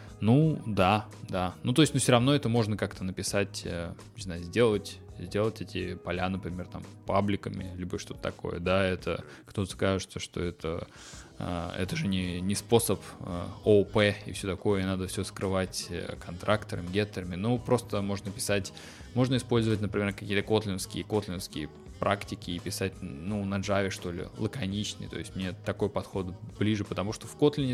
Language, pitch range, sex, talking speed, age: Russian, 95-115 Hz, male, 160 wpm, 20-39